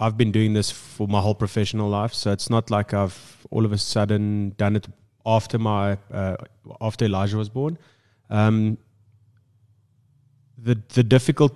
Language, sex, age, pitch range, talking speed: English, male, 20-39, 100-120 Hz, 160 wpm